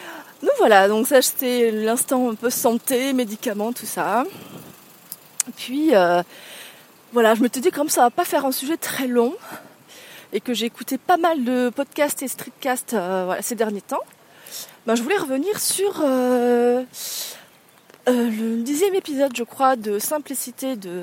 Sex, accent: female, French